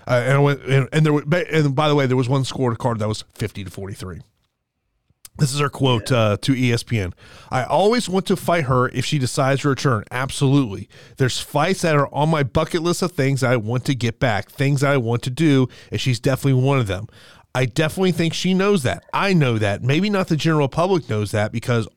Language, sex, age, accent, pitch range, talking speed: English, male, 30-49, American, 120-155 Hz, 230 wpm